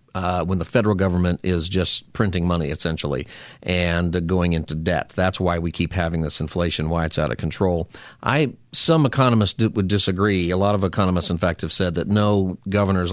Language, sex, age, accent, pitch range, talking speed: English, male, 50-69, American, 90-115 Hz, 200 wpm